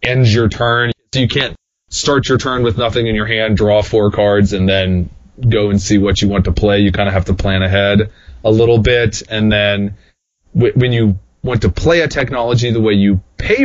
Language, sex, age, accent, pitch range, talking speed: English, male, 20-39, American, 95-120 Hz, 225 wpm